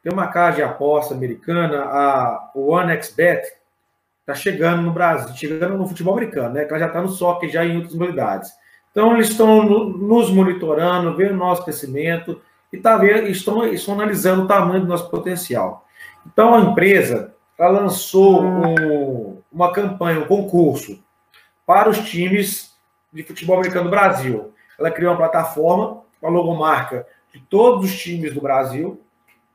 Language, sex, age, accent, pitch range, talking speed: Portuguese, male, 40-59, Brazilian, 165-210 Hz, 160 wpm